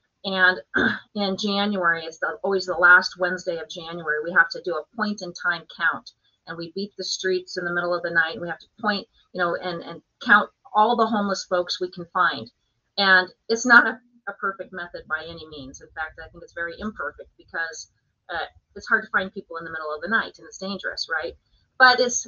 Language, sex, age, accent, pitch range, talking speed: English, female, 30-49, American, 175-220 Hz, 220 wpm